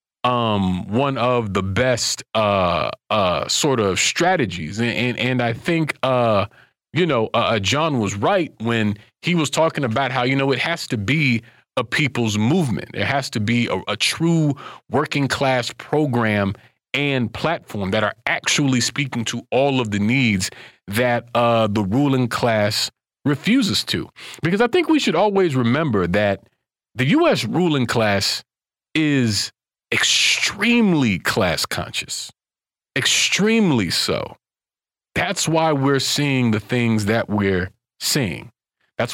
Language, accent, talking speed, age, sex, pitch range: English, American, 145 wpm, 40-59, male, 110-145 Hz